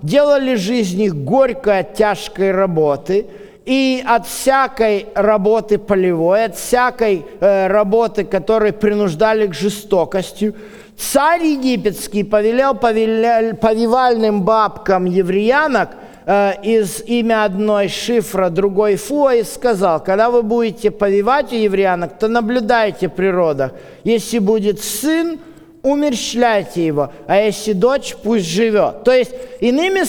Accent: native